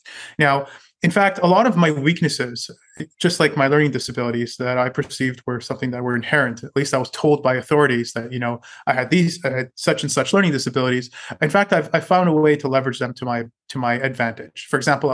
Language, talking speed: English, 230 wpm